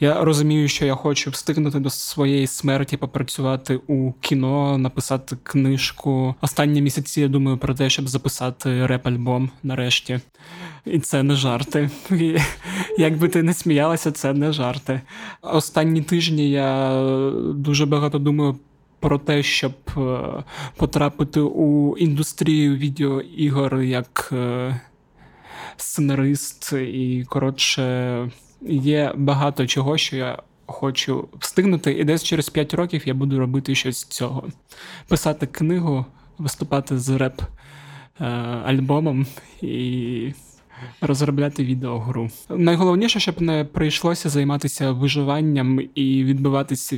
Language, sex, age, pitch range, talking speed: Ukrainian, male, 20-39, 130-150 Hz, 110 wpm